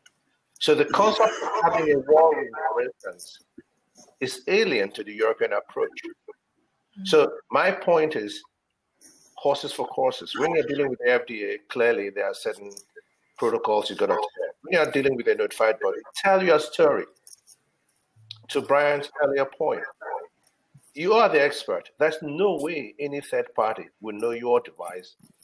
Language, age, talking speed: English, 50-69, 150 wpm